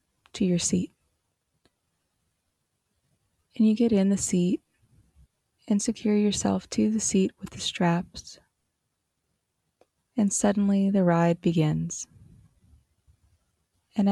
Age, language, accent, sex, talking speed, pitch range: 20-39, English, American, female, 100 wpm, 165-205 Hz